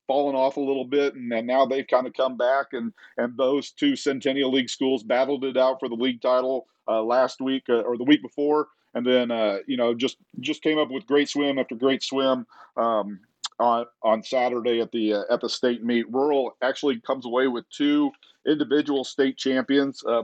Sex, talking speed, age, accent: male, 210 wpm, 40-59, American